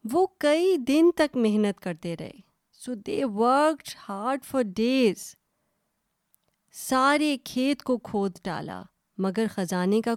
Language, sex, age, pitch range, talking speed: Urdu, female, 30-49, 200-295 Hz, 125 wpm